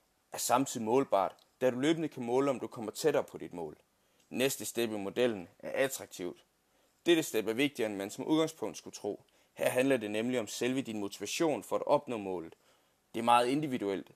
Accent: native